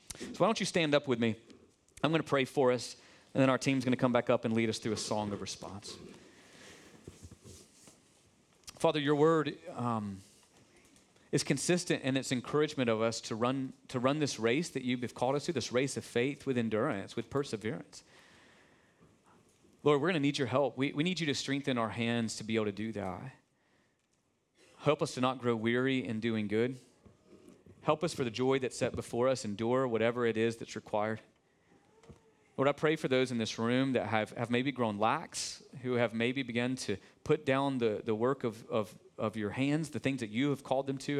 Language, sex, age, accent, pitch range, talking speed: English, male, 30-49, American, 110-135 Hz, 205 wpm